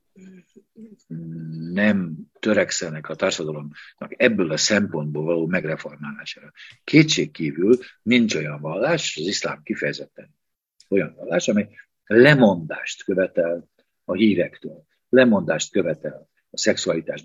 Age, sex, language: 50-69, male, Hungarian